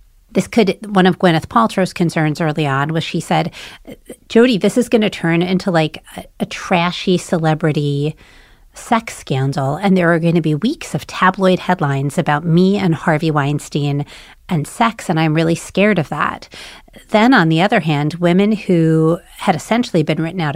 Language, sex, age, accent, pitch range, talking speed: English, female, 40-59, American, 150-185 Hz, 185 wpm